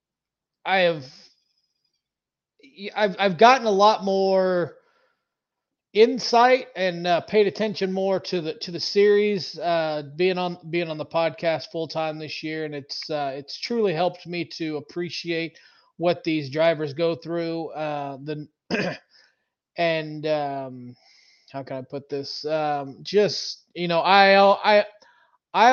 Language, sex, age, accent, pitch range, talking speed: English, male, 20-39, American, 155-185 Hz, 140 wpm